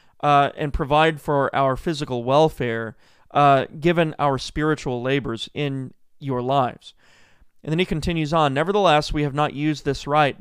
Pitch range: 135-170 Hz